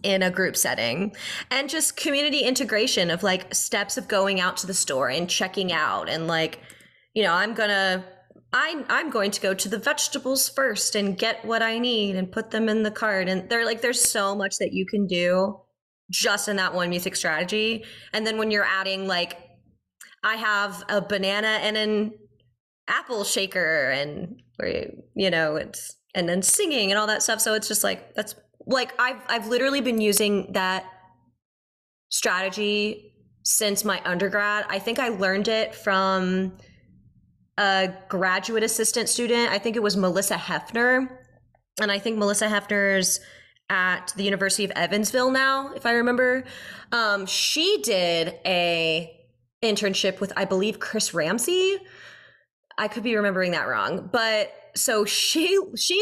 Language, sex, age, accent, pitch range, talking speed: English, female, 20-39, American, 185-230 Hz, 165 wpm